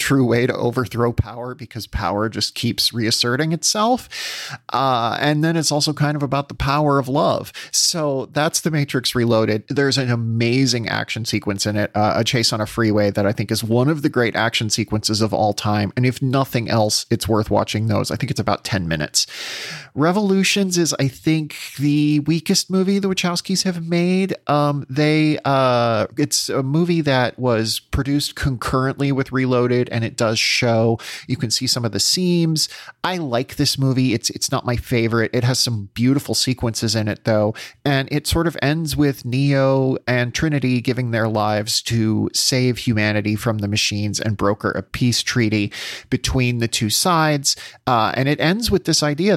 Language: English